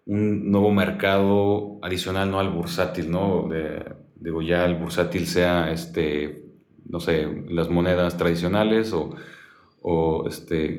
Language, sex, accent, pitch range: Spanish, male, Mexican, 85-105 Hz